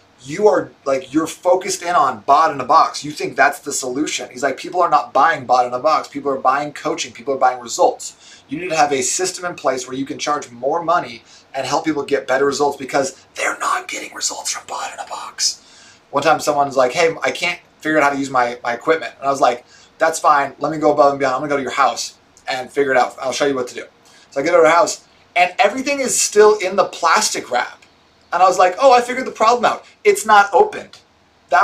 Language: English